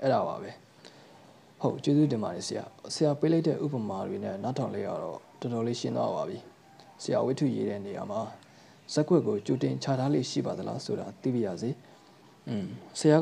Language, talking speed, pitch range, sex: English, 90 wpm, 120-155 Hz, male